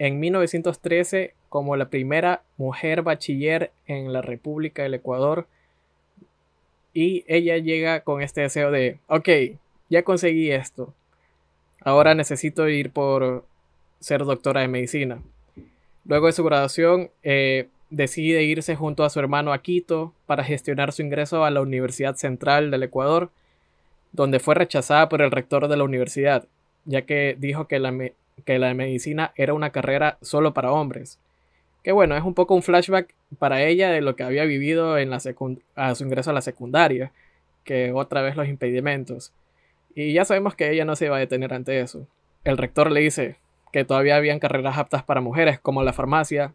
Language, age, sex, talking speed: Spanish, 20-39, male, 170 wpm